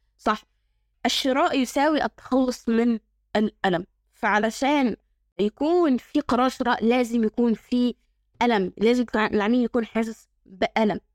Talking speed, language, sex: 115 wpm, Arabic, female